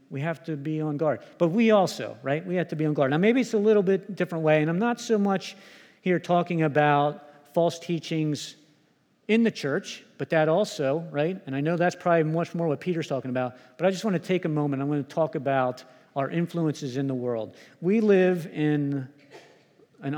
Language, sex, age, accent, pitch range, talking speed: English, male, 50-69, American, 135-165 Hz, 220 wpm